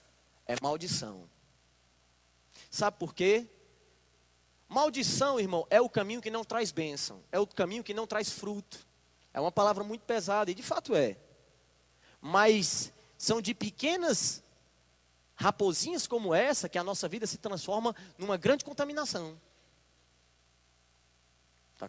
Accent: Brazilian